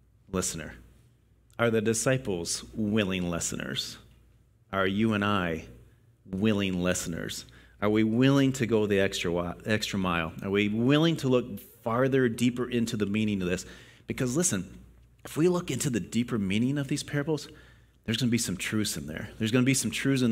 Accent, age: American, 30-49